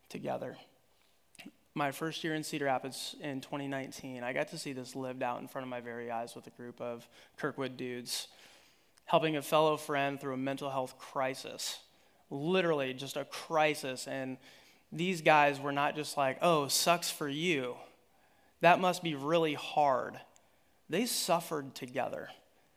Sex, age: male, 20-39